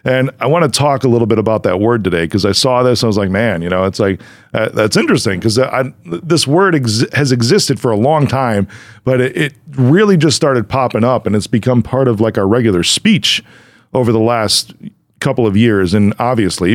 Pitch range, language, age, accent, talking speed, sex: 110-140 Hz, English, 40-59, American, 225 wpm, male